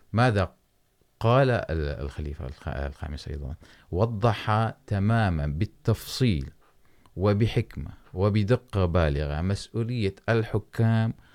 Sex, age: male, 30-49